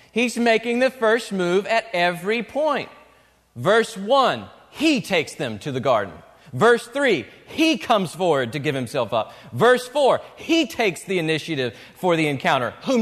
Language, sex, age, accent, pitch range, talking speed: English, male, 40-59, American, 155-250 Hz, 160 wpm